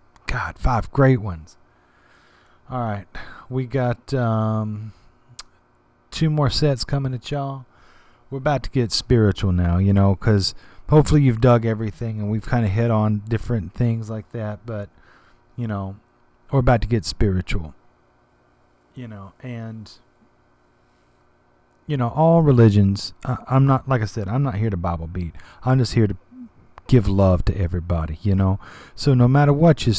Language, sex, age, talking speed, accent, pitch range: English, male, 30-49, 160 wpm, American, 95-120 Hz